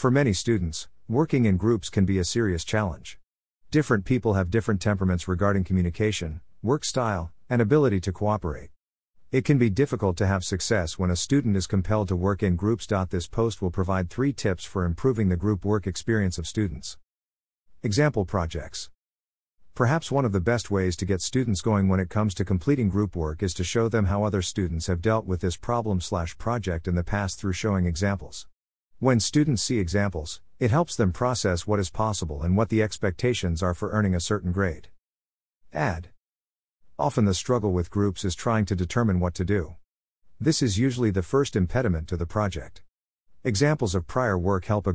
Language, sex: English, male